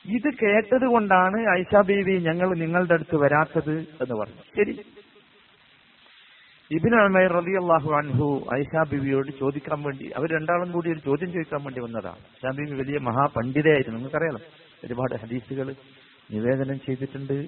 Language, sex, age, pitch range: Malayalam, male, 50-69, 135-200 Hz